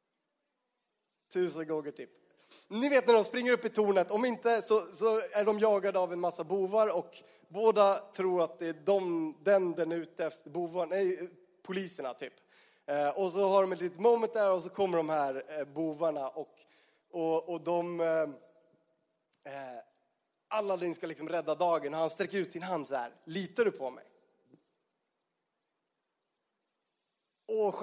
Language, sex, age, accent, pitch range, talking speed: Swedish, male, 30-49, native, 165-205 Hz, 160 wpm